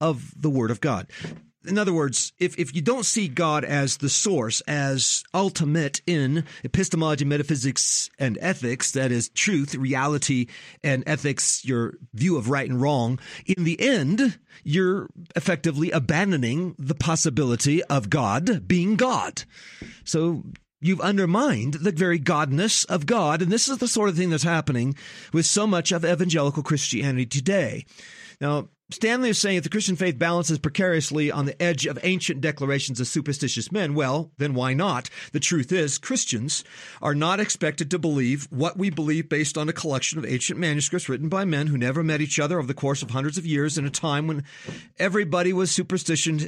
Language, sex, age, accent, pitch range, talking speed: English, male, 40-59, American, 140-180 Hz, 175 wpm